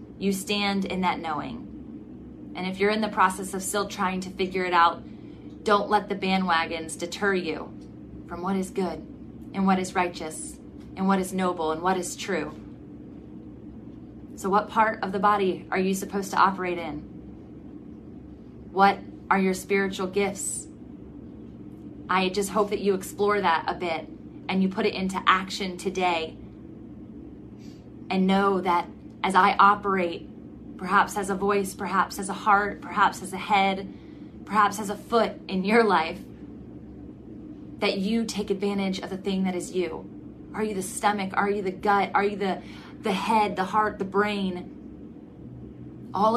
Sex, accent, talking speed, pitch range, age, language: female, American, 165 wpm, 185-205 Hz, 20-39, English